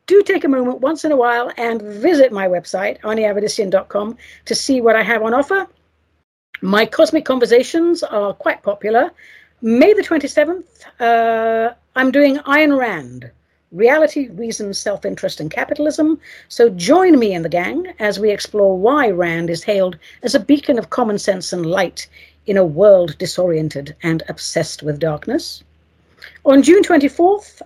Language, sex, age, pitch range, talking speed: English, female, 60-79, 180-280 Hz, 155 wpm